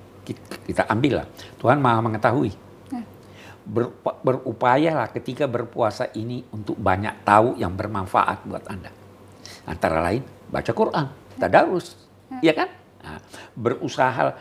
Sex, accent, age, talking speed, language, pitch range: male, Indonesian, 50-69, 100 wpm, English, 100-130 Hz